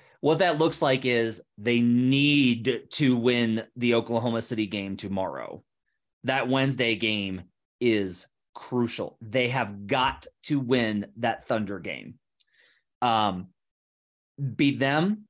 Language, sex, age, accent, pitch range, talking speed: English, male, 30-49, American, 120-160 Hz, 120 wpm